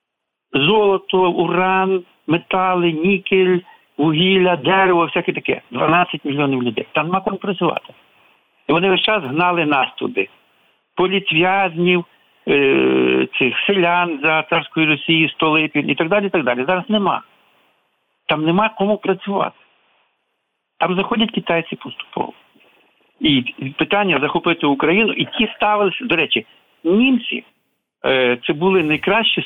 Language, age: Ukrainian, 60-79